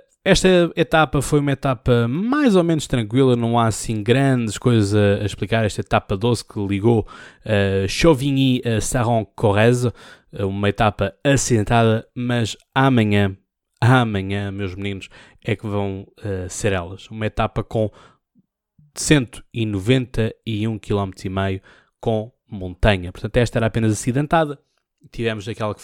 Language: Portuguese